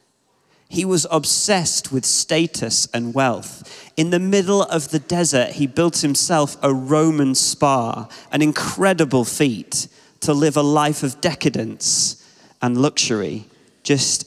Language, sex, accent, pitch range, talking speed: English, male, British, 120-155 Hz, 130 wpm